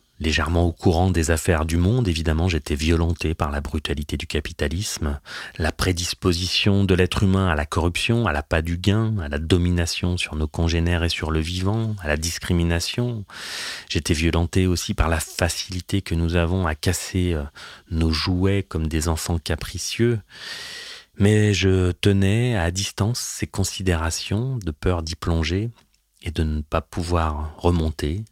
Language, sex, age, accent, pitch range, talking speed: French, male, 30-49, French, 80-100 Hz, 155 wpm